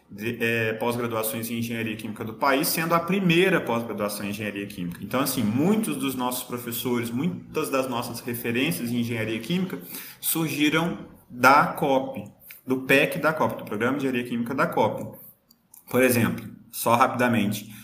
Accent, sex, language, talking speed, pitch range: Brazilian, male, Portuguese, 155 wpm, 115-145 Hz